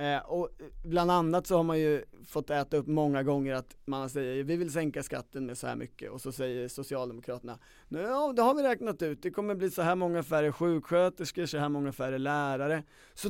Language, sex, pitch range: Swedish, male, 125-170 Hz